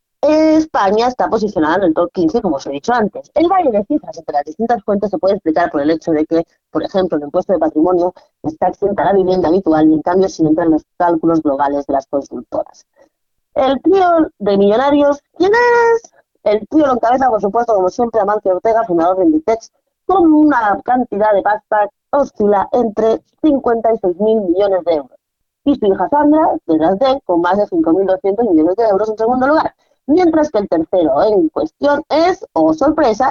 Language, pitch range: Spanish, 180-285 Hz